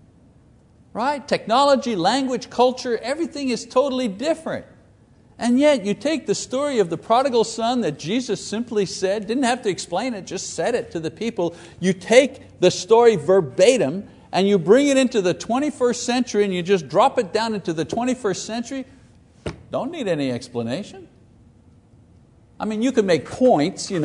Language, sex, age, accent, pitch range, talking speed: English, male, 60-79, American, 160-245 Hz, 165 wpm